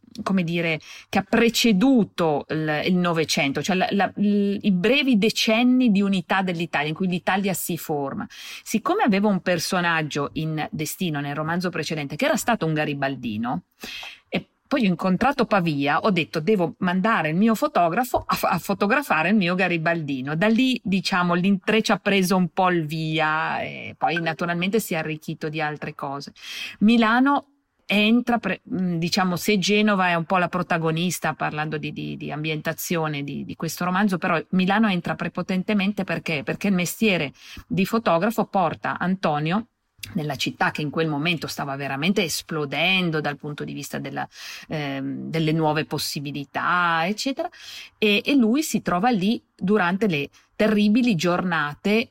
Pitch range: 160-210 Hz